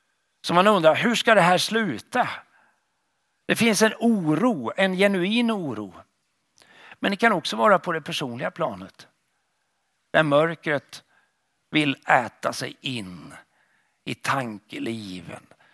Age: 60-79